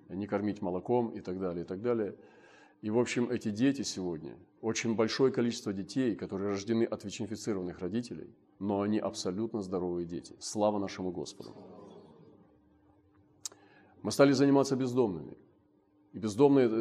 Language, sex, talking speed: Russian, male, 135 wpm